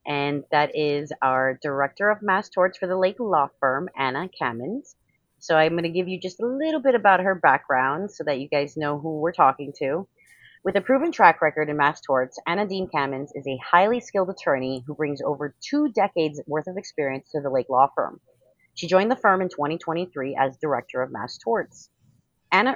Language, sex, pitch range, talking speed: English, female, 140-185 Hz, 205 wpm